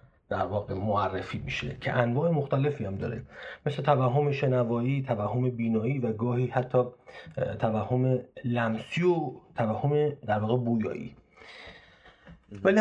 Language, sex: Persian, male